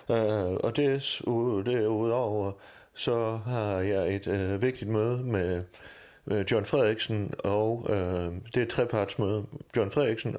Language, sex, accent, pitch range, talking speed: Danish, male, native, 95-125 Hz, 140 wpm